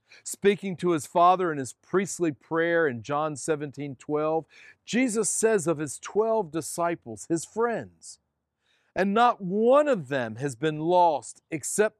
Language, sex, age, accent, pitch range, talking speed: English, male, 50-69, American, 125-185 Hz, 145 wpm